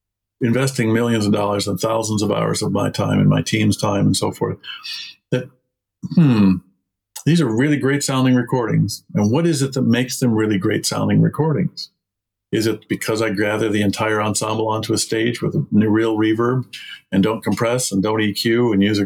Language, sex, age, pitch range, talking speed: English, male, 50-69, 105-125 Hz, 195 wpm